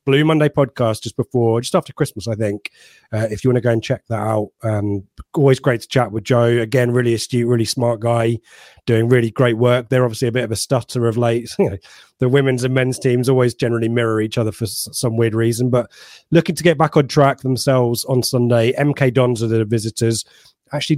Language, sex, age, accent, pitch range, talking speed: English, male, 30-49, British, 115-140 Hz, 215 wpm